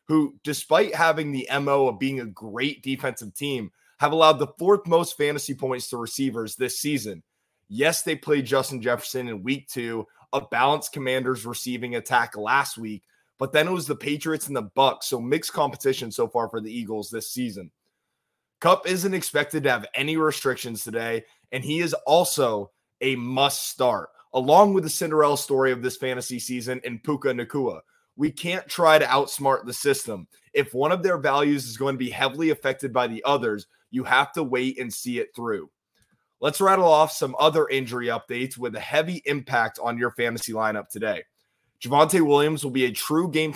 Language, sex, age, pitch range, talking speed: English, male, 20-39, 120-150 Hz, 185 wpm